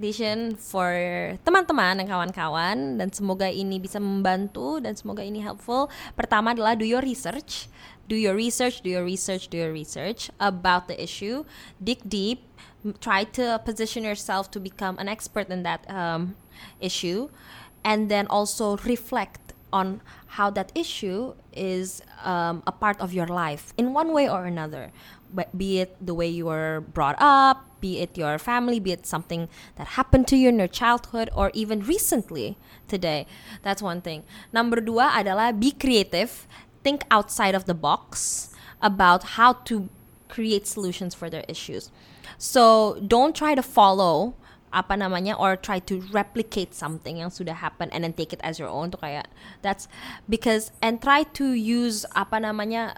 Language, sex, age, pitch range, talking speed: English, female, 20-39, 180-230 Hz, 155 wpm